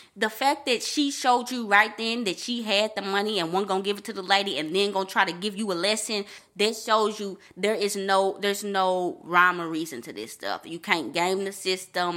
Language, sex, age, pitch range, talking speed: English, female, 20-39, 175-210 Hz, 240 wpm